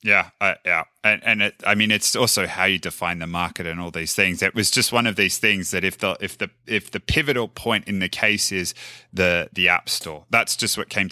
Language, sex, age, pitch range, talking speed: English, male, 30-49, 95-115 Hz, 255 wpm